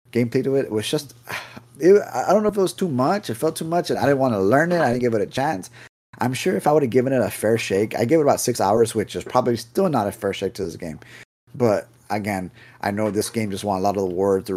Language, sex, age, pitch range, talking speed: English, male, 30-49, 100-125 Hz, 295 wpm